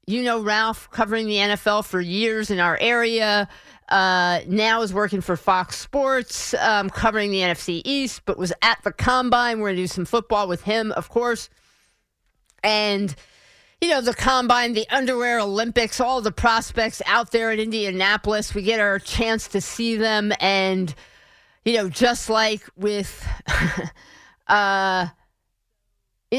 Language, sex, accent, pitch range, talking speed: English, female, American, 190-230 Hz, 155 wpm